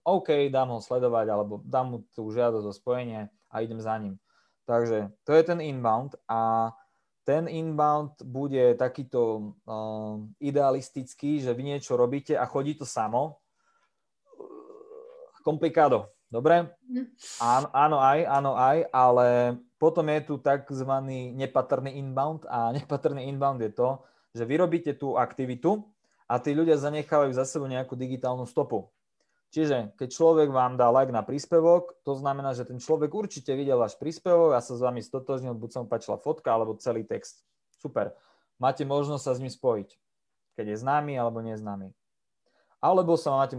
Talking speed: 155 wpm